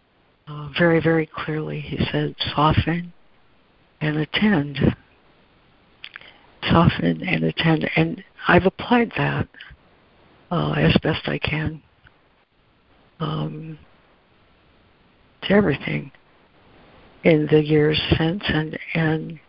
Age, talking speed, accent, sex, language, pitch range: 60-79, 90 wpm, American, female, English, 120-165 Hz